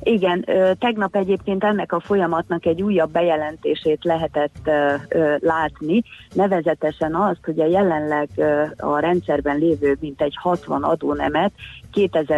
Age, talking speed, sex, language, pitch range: 30-49, 125 wpm, female, Hungarian, 140-170 Hz